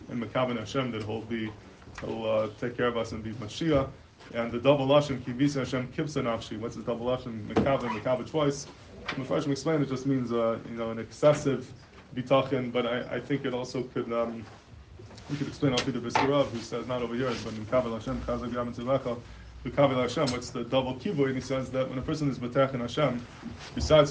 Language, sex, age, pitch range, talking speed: English, male, 20-39, 115-135 Hz, 200 wpm